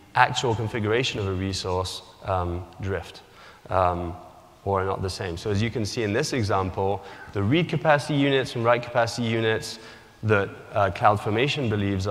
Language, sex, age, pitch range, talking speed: English, male, 20-39, 95-115 Hz, 165 wpm